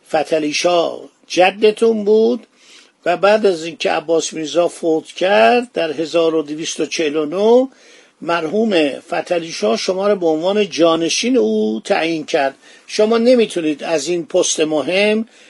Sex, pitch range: male, 160-210 Hz